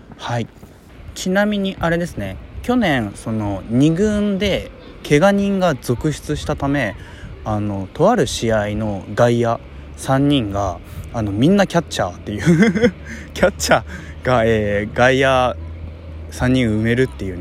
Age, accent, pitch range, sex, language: 20-39, native, 95-135 Hz, male, Japanese